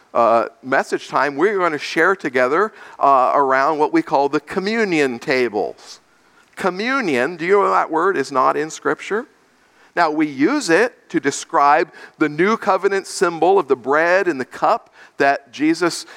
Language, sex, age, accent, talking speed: English, male, 50-69, American, 165 wpm